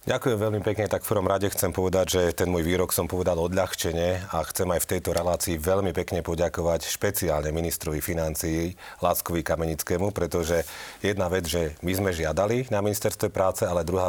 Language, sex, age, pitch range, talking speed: Slovak, male, 40-59, 85-105 Hz, 180 wpm